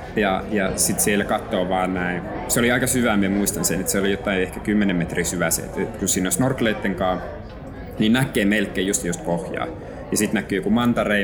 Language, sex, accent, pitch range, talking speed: Finnish, male, native, 95-120 Hz, 200 wpm